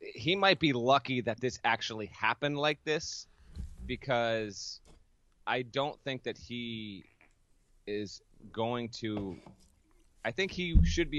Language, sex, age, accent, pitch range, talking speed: English, male, 30-49, American, 100-125 Hz, 130 wpm